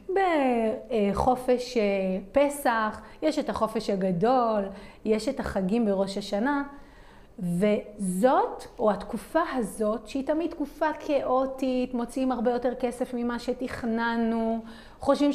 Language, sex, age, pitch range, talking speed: Hebrew, female, 30-49, 215-285 Hz, 100 wpm